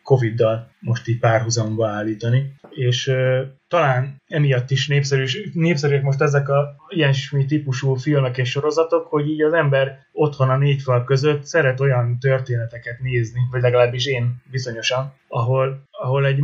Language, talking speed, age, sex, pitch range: Hungarian, 145 wpm, 20-39, male, 120-135 Hz